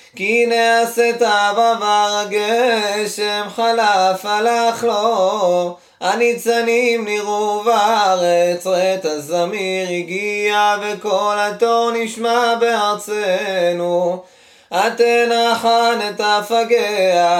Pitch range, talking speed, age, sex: 185-230 Hz, 75 wpm, 20-39, male